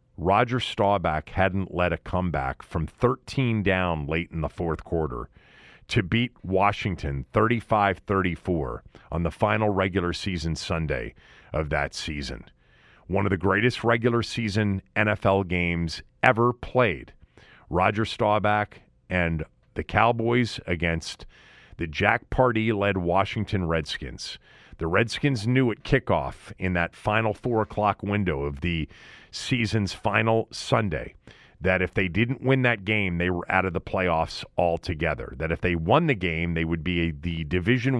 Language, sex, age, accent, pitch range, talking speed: English, male, 40-59, American, 85-110 Hz, 140 wpm